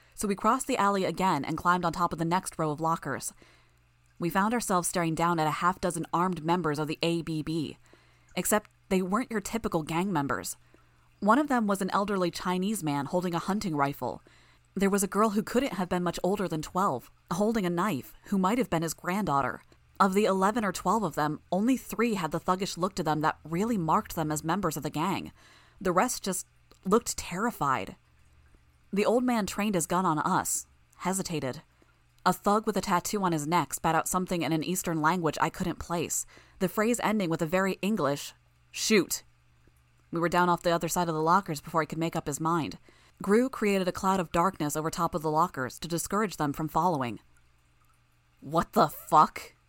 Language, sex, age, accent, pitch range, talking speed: English, female, 20-39, American, 155-195 Hz, 205 wpm